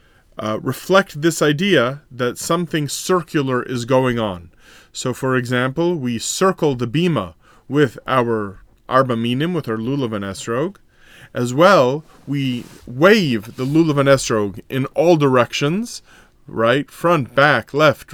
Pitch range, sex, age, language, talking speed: 115-150 Hz, male, 30-49, English, 120 wpm